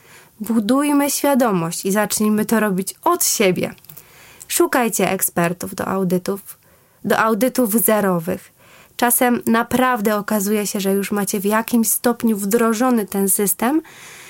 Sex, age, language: female, 20-39, Polish